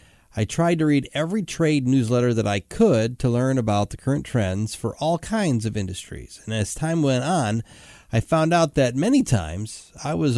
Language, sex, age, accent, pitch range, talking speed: English, male, 30-49, American, 105-150 Hz, 195 wpm